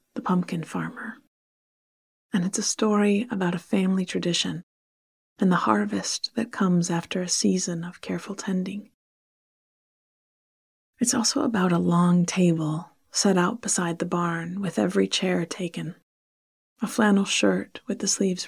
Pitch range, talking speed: 175-210 Hz, 140 wpm